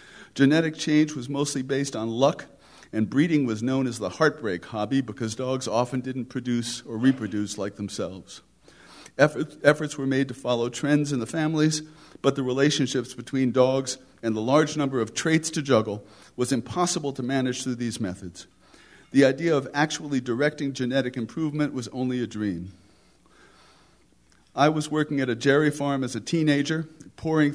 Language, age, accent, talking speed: English, 50-69, American, 165 wpm